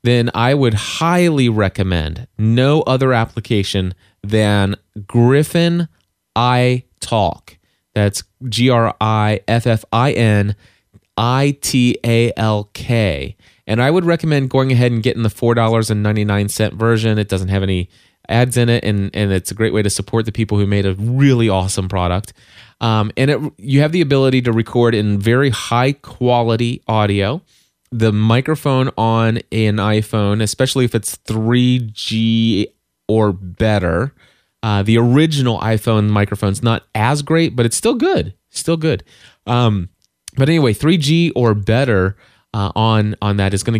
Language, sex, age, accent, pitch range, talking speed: English, male, 20-39, American, 105-125 Hz, 135 wpm